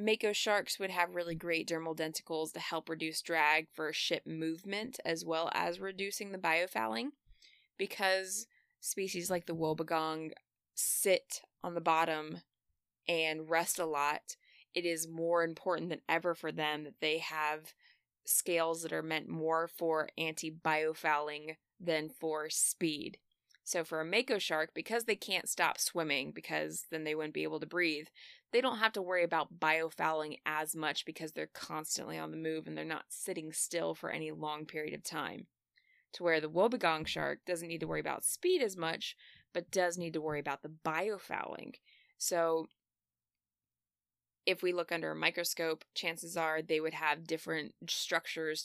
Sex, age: female, 20-39